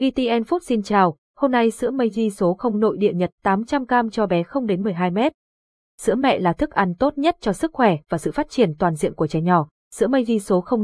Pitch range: 185-240 Hz